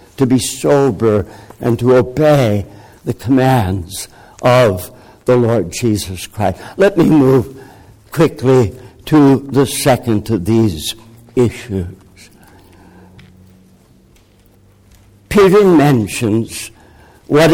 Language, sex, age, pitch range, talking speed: English, male, 60-79, 105-145 Hz, 90 wpm